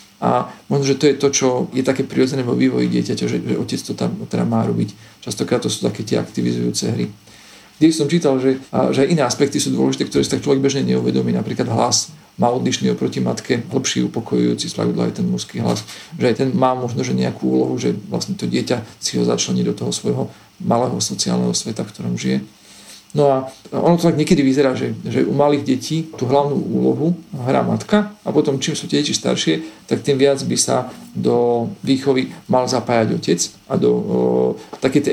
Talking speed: 200 wpm